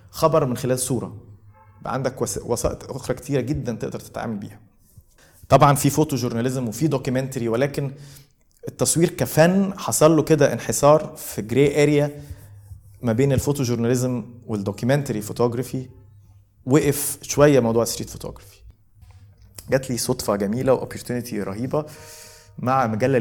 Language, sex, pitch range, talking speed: Arabic, male, 105-140 Hz, 120 wpm